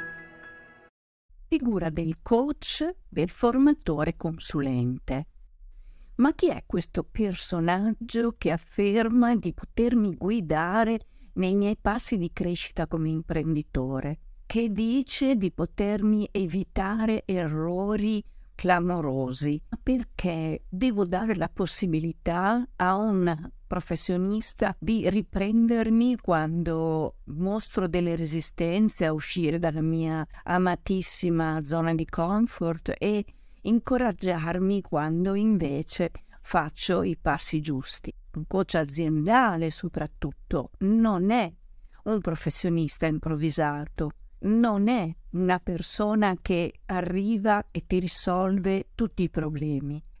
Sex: female